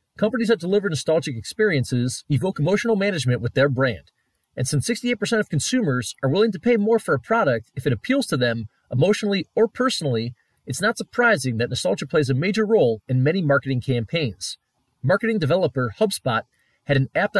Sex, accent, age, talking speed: male, American, 30-49, 175 wpm